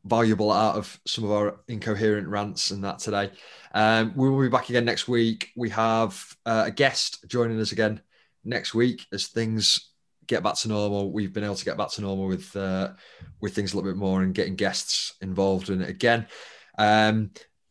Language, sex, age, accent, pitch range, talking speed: English, male, 20-39, British, 100-115 Hz, 195 wpm